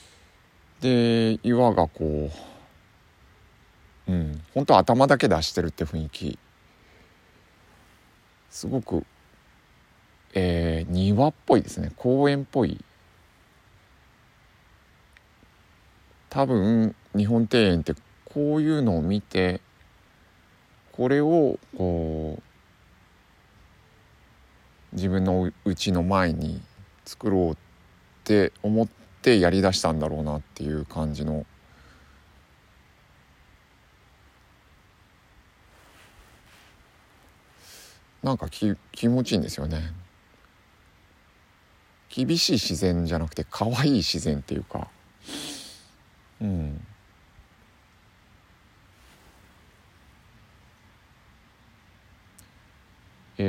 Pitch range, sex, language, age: 80-105 Hz, male, Japanese, 50-69